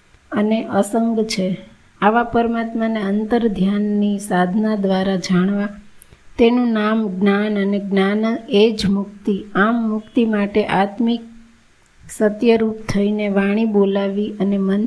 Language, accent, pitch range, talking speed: Gujarati, native, 200-225 Hz, 85 wpm